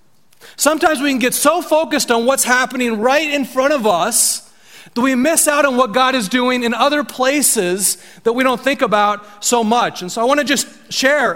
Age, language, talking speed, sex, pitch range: 30-49, English, 210 wpm, male, 195-260 Hz